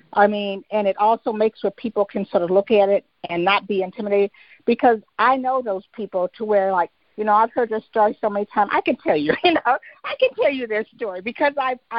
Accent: American